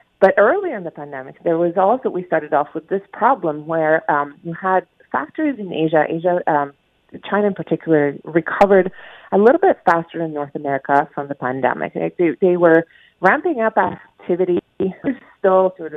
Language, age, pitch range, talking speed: English, 30-49, 155-205 Hz, 175 wpm